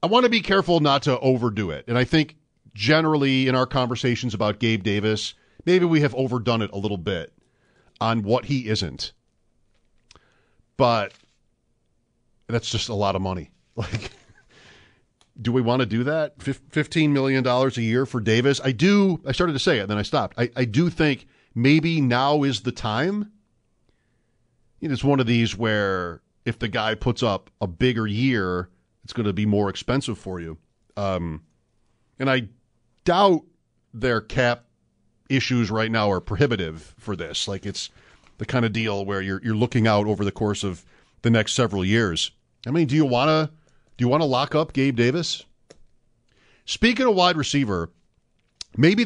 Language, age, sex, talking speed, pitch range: English, 40-59, male, 170 wpm, 105-140 Hz